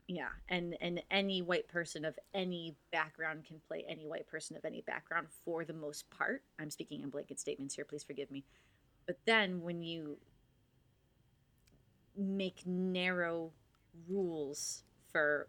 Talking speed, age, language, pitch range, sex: 145 wpm, 30-49, English, 145-180 Hz, female